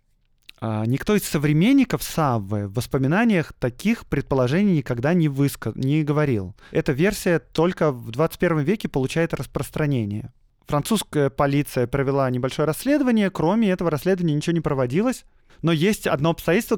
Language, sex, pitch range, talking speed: Russian, male, 130-170 Hz, 125 wpm